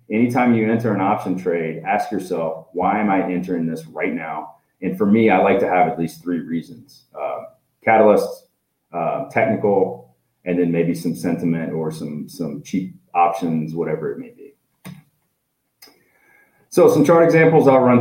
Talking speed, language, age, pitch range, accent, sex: 165 wpm, English, 30-49, 95-140 Hz, American, male